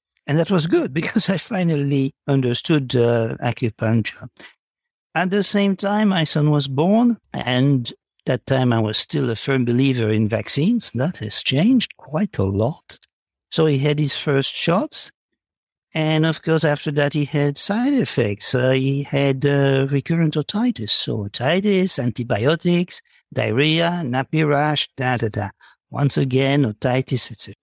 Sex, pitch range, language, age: male, 120-155 Hz, English, 60-79